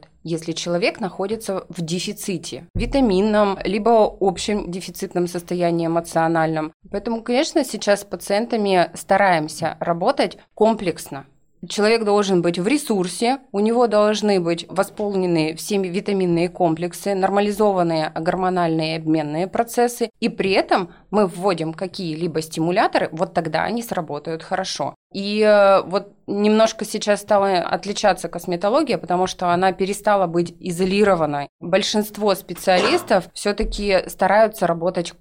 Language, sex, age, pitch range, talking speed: Russian, female, 20-39, 170-205 Hz, 110 wpm